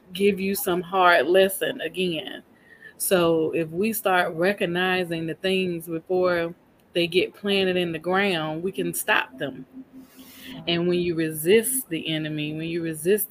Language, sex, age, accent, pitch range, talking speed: English, female, 20-39, American, 155-185 Hz, 150 wpm